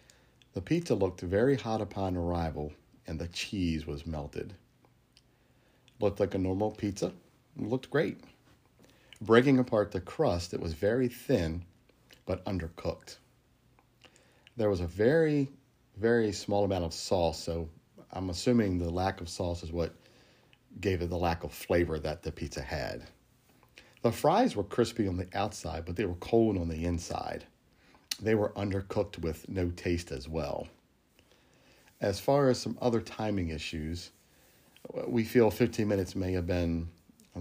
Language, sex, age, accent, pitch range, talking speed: English, male, 50-69, American, 85-115 Hz, 150 wpm